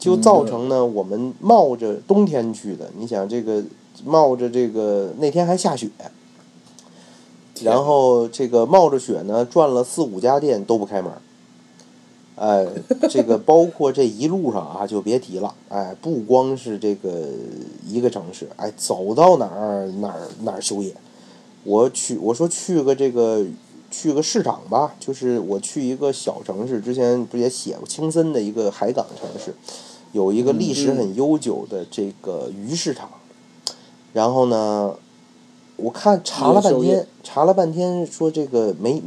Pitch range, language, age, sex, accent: 100-155 Hz, Chinese, 30-49, male, native